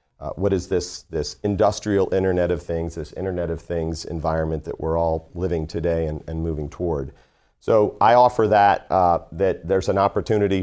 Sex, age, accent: male, 40-59, American